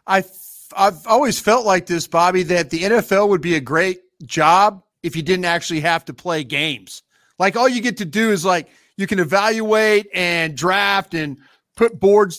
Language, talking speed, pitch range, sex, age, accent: English, 190 wpm, 160-195 Hz, male, 40-59, American